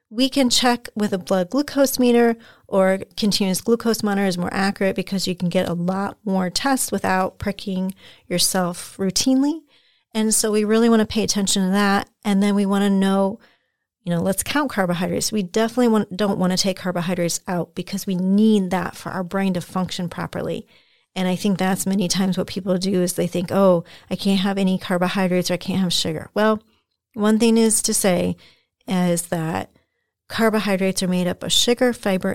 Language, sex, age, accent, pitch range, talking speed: English, female, 40-59, American, 185-210 Hz, 195 wpm